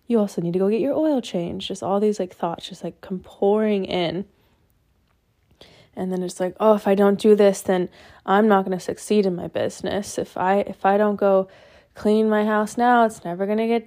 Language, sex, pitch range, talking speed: English, female, 185-210 Hz, 220 wpm